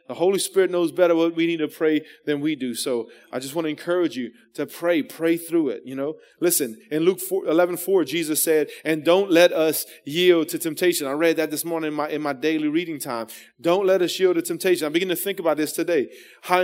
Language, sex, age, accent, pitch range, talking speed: English, male, 30-49, American, 150-190 Hz, 245 wpm